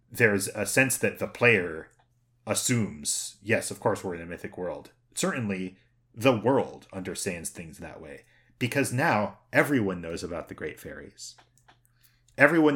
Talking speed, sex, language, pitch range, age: 145 wpm, male, English, 110-125 Hz, 30-49